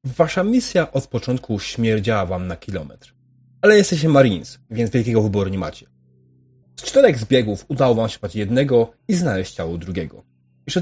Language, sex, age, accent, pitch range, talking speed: Polish, male, 30-49, native, 95-130 Hz, 155 wpm